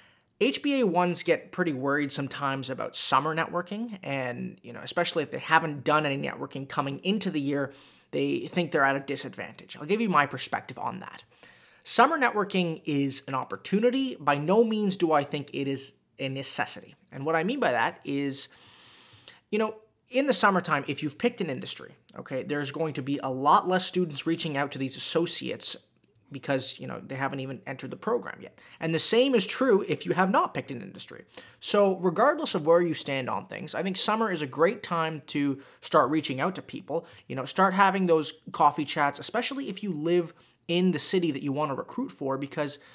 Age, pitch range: 20-39, 140-185 Hz